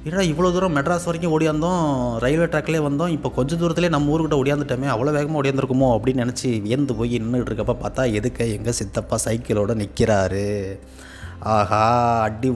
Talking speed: 155 wpm